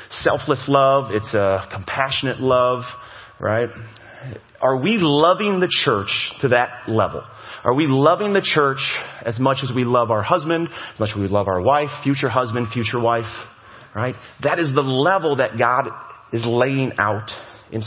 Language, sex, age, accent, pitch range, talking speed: English, male, 30-49, American, 115-165 Hz, 165 wpm